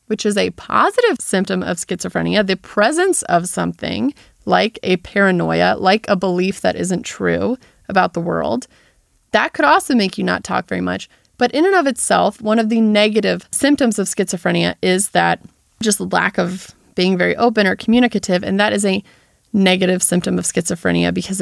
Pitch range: 185-235 Hz